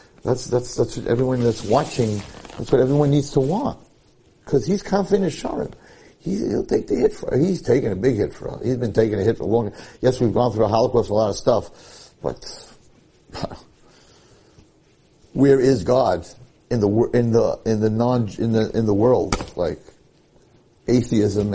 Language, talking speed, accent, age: English, 185 wpm, American, 60-79